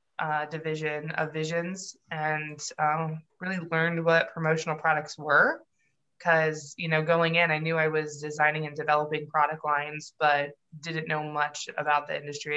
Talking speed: 160 wpm